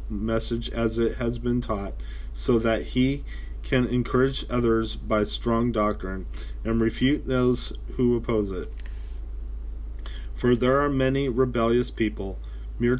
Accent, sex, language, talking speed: American, male, English, 130 wpm